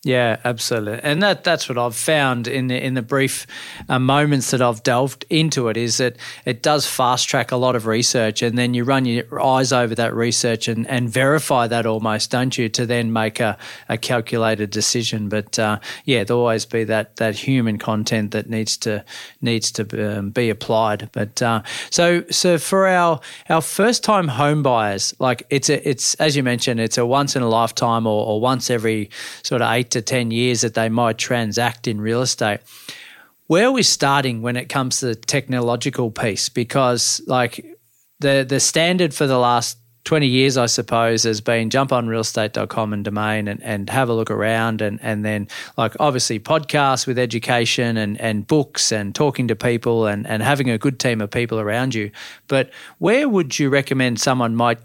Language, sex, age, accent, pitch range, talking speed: English, male, 40-59, Australian, 110-130 Hz, 195 wpm